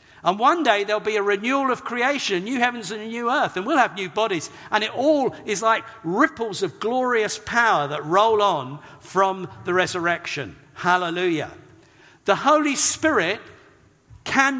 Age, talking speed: 50-69, 165 wpm